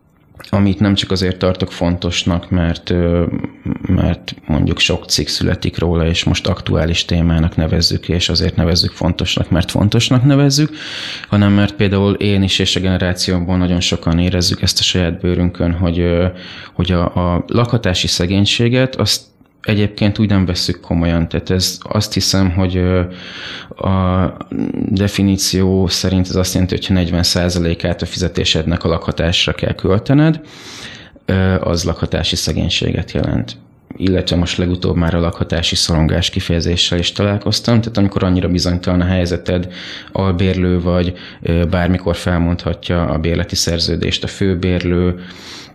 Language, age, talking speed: Hungarian, 20-39, 130 wpm